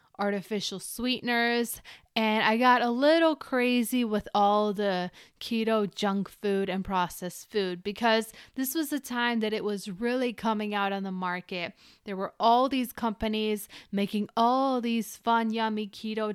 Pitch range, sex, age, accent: 205-250 Hz, female, 20-39, American